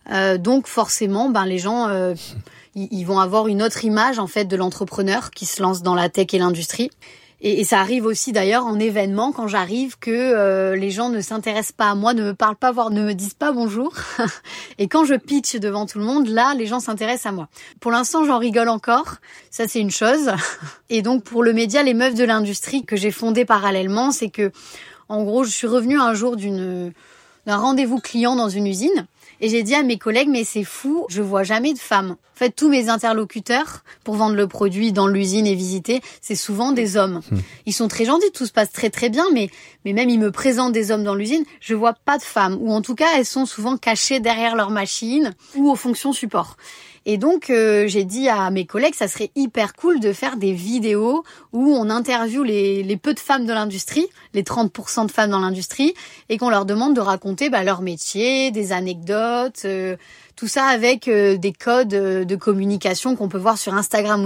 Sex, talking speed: female, 220 wpm